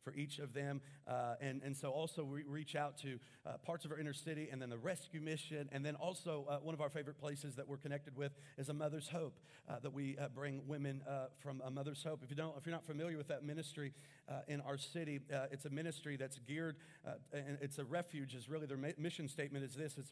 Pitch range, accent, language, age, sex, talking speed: 135-155 Hz, American, English, 40-59, male, 255 wpm